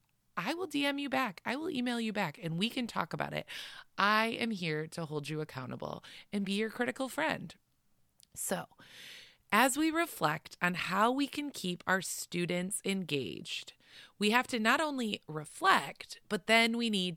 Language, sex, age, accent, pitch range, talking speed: English, female, 20-39, American, 165-240 Hz, 175 wpm